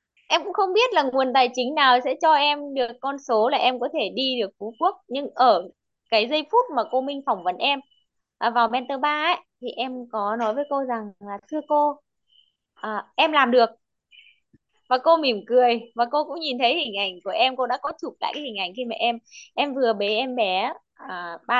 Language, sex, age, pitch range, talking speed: Vietnamese, female, 20-39, 200-280 Hz, 230 wpm